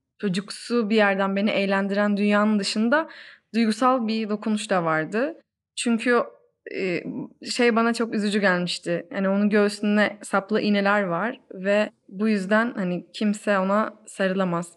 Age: 20-39